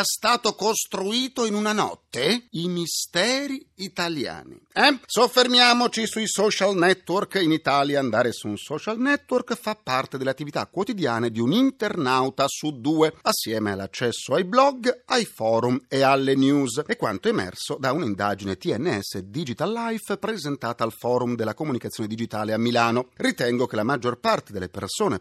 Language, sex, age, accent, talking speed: Italian, male, 40-59, native, 150 wpm